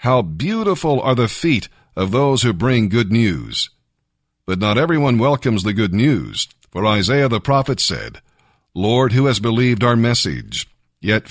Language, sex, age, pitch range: English, male, 50-69, 100-135 Hz